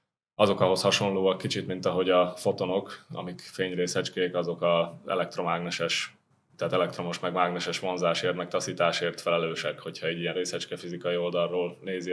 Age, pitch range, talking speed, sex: 20-39, 90-110 Hz, 135 wpm, male